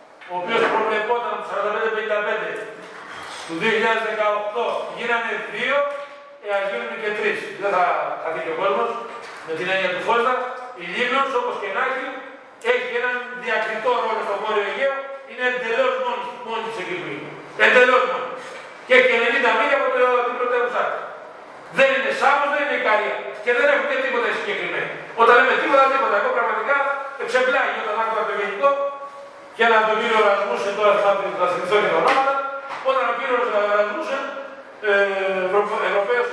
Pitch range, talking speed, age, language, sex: 205-255 Hz, 145 wpm, 40-59, Greek, male